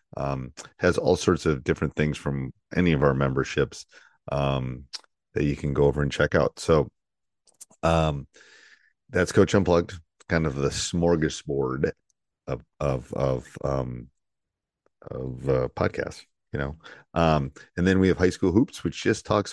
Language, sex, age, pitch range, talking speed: English, male, 30-49, 70-80 Hz, 155 wpm